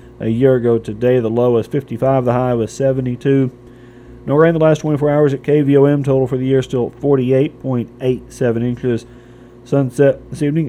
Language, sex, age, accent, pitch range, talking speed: English, male, 40-59, American, 120-140 Hz, 170 wpm